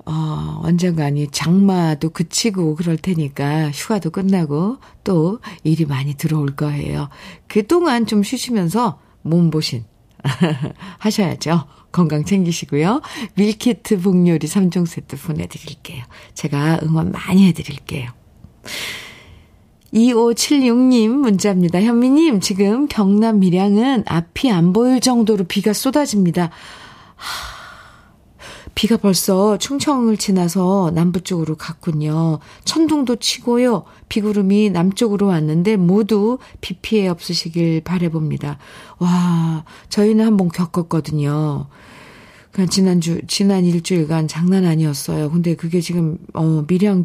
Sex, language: female, Korean